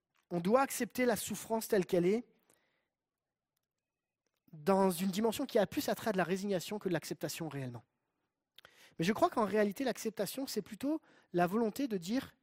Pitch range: 180-245 Hz